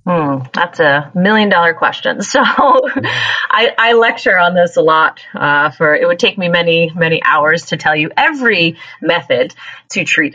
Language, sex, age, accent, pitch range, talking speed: English, female, 30-49, American, 165-255 Hz, 175 wpm